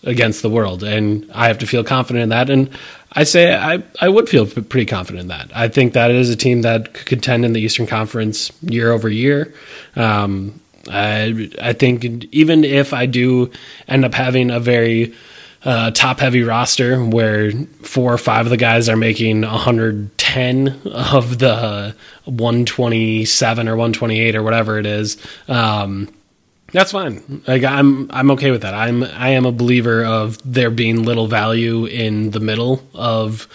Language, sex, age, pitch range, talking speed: English, male, 20-39, 110-125 Hz, 175 wpm